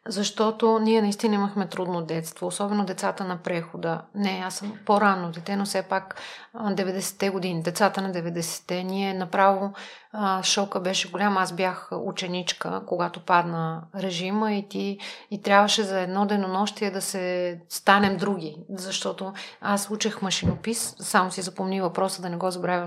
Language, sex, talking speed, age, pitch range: Bulgarian, female, 155 wpm, 30-49, 185-215 Hz